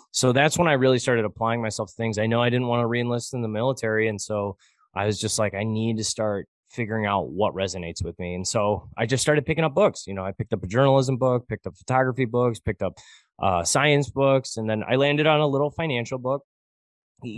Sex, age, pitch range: male, 20-39, 110-130 Hz